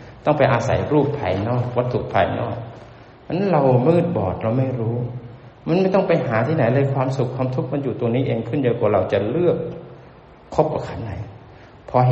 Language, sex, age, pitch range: Thai, male, 60-79, 105-130 Hz